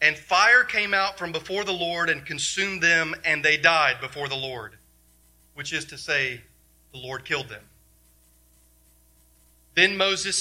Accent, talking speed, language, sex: American, 155 wpm, English, male